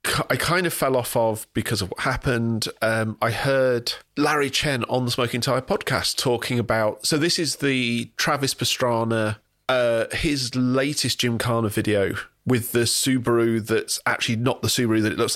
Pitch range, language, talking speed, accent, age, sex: 110-140 Hz, English, 175 wpm, British, 40-59, male